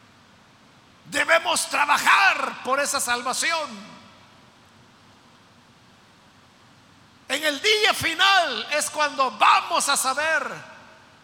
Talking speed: 75 wpm